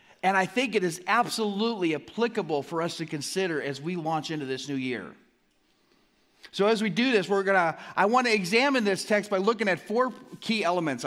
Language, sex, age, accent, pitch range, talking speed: English, male, 40-59, American, 140-200 Hz, 200 wpm